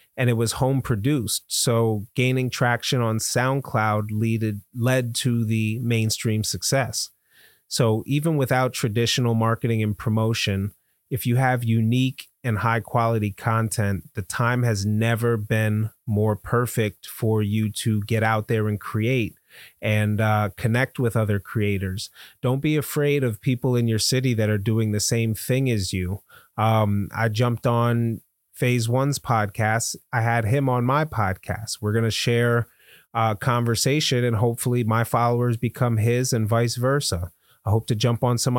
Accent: American